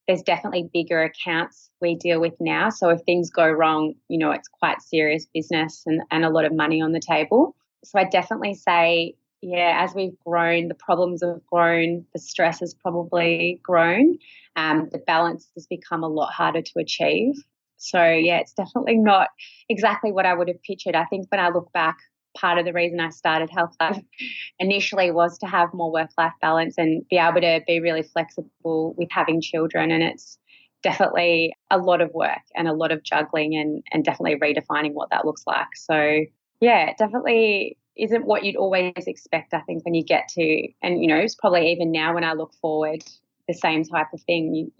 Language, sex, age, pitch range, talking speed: English, female, 20-39, 160-180 Hz, 200 wpm